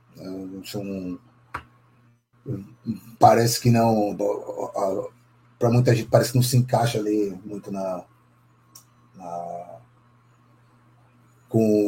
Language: Portuguese